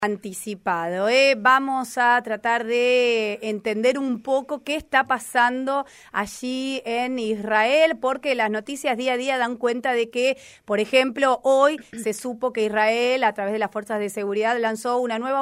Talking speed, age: 165 wpm, 30-49